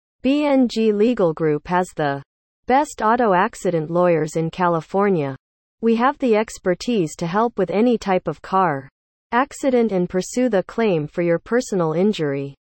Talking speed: 145 wpm